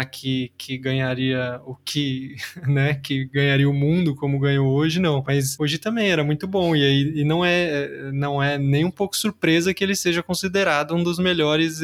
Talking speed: 180 wpm